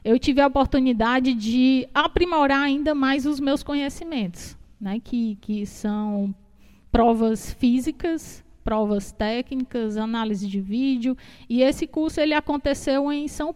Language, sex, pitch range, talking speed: Portuguese, female, 230-285 Hz, 125 wpm